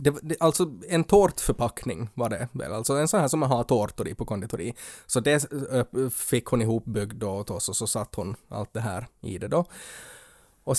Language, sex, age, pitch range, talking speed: Swedish, male, 20-39, 115-165 Hz, 205 wpm